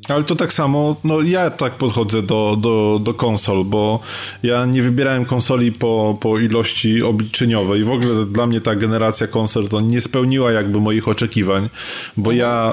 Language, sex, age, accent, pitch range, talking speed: Polish, male, 20-39, native, 110-125 Hz, 170 wpm